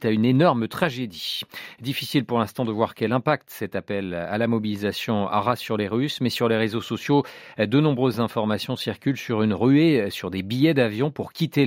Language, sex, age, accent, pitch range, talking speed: French, male, 40-59, French, 105-135 Hz, 195 wpm